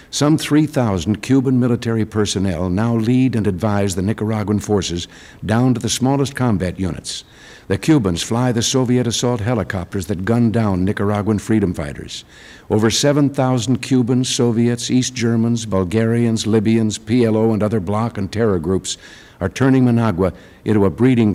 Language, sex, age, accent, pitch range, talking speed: English, male, 60-79, American, 100-125 Hz, 145 wpm